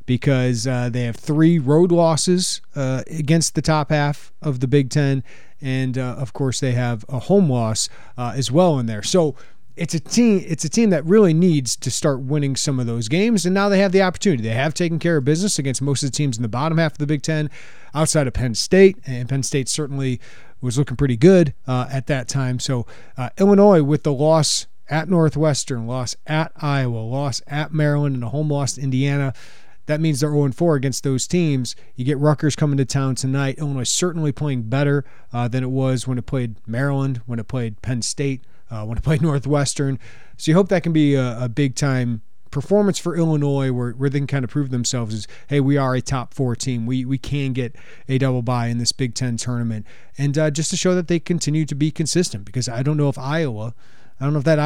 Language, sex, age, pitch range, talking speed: English, male, 40-59, 125-155 Hz, 225 wpm